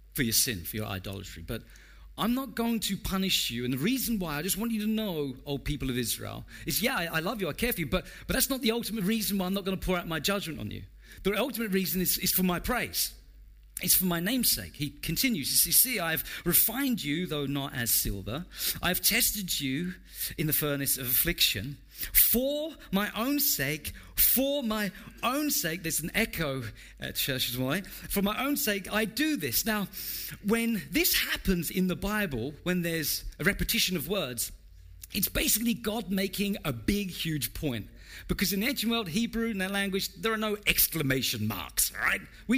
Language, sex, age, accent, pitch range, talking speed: English, male, 40-59, British, 130-215 Hz, 205 wpm